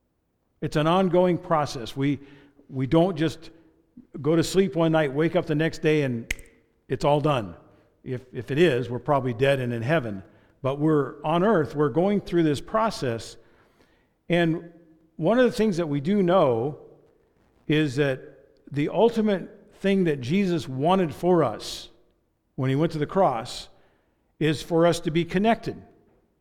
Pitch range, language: 140-185 Hz, English